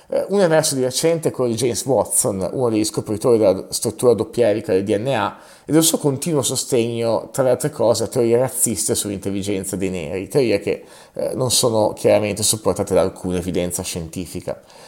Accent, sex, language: native, male, Italian